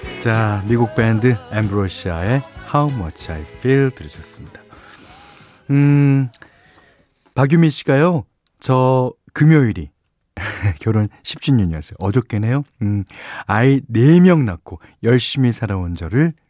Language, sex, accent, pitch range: Korean, male, native, 95-140 Hz